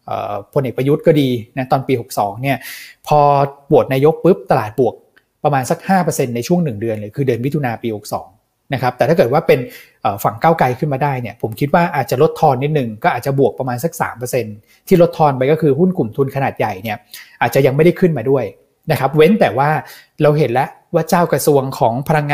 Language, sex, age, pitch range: Thai, male, 20-39, 125-155 Hz